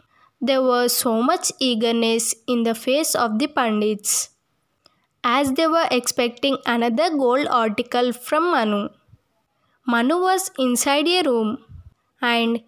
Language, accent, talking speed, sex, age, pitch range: Telugu, native, 125 wpm, female, 20-39, 235-290 Hz